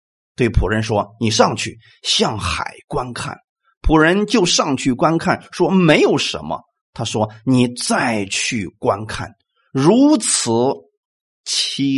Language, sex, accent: Chinese, male, native